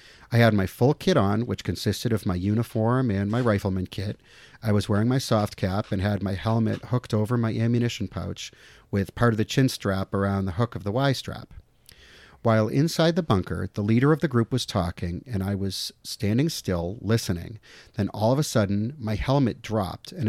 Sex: male